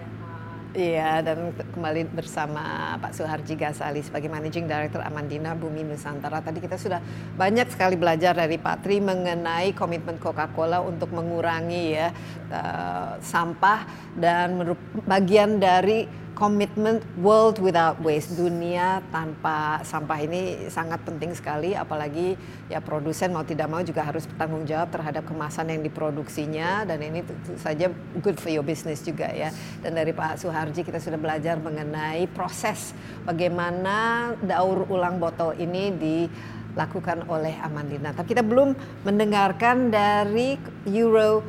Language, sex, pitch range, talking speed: Indonesian, female, 155-195 Hz, 135 wpm